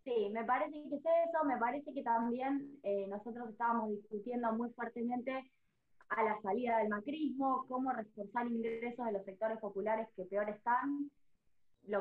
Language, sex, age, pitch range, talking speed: Spanish, female, 20-39, 220-275 Hz, 160 wpm